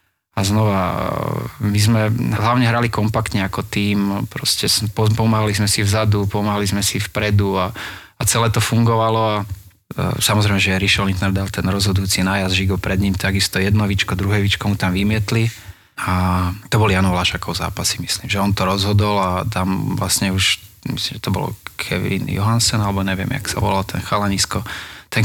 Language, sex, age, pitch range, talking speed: Slovak, male, 20-39, 95-105 Hz, 165 wpm